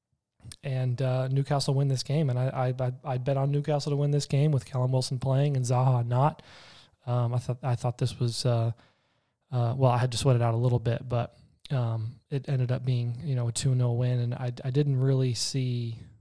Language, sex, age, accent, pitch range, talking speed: English, male, 20-39, American, 125-140 Hz, 225 wpm